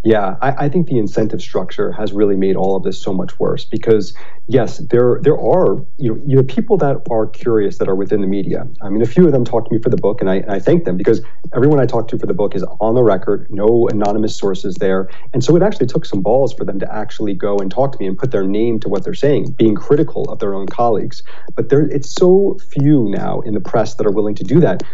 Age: 40-59